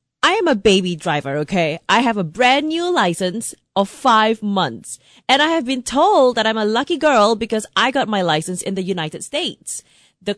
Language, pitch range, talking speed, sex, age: English, 195-275 Hz, 200 wpm, female, 30-49